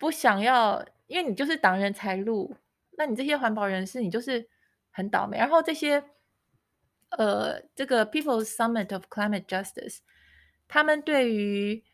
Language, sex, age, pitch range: Chinese, female, 20-39, 195-250 Hz